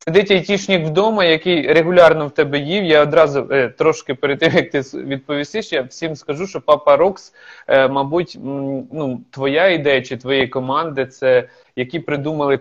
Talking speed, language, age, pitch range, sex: 150 wpm, Ukrainian, 20-39, 130-165 Hz, male